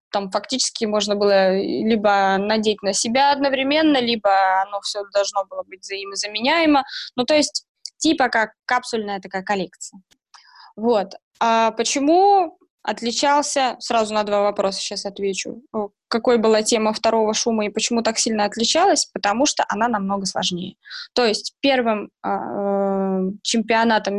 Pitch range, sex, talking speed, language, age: 205-255 Hz, female, 130 wpm, Russian, 20-39